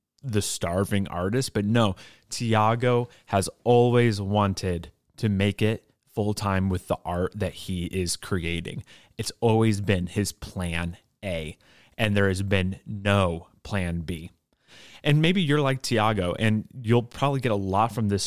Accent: American